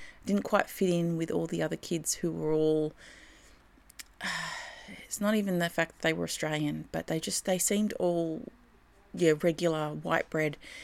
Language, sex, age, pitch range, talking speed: English, female, 30-49, 155-195 Hz, 170 wpm